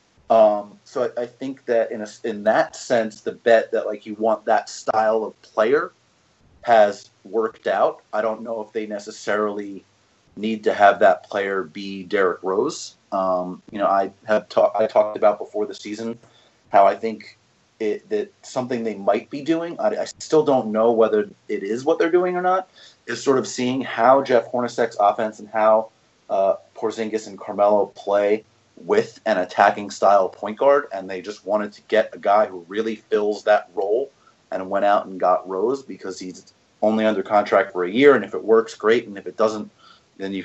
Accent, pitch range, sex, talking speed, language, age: American, 100-115 Hz, male, 195 wpm, English, 30-49